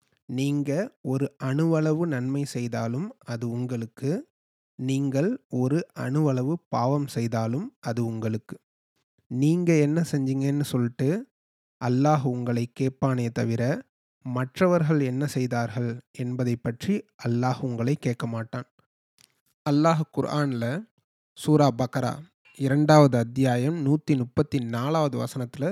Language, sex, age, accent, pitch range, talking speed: Tamil, male, 30-49, native, 125-155 Hz, 85 wpm